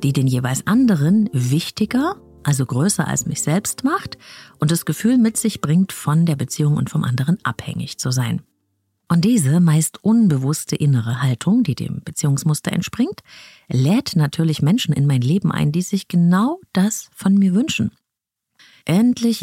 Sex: female